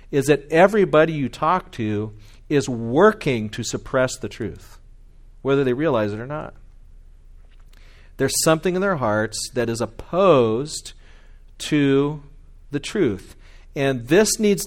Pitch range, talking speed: 100-145 Hz, 130 wpm